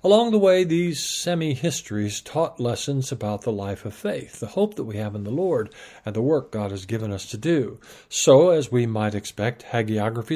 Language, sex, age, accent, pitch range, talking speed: English, male, 50-69, American, 115-165 Hz, 205 wpm